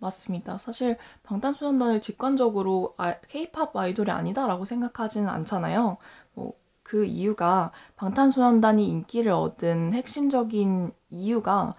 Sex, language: female, Korean